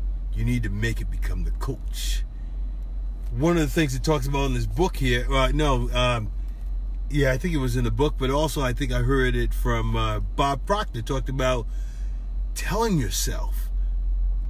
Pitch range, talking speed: 110-150 Hz, 185 wpm